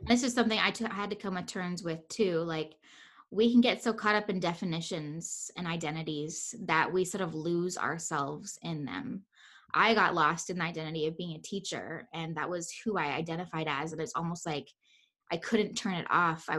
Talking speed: 210 wpm